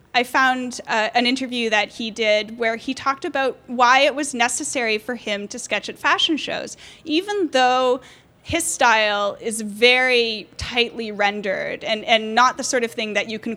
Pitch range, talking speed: 210-265 Hz, 180 wpm